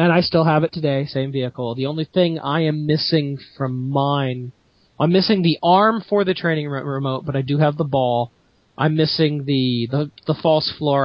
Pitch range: 125-155 Hz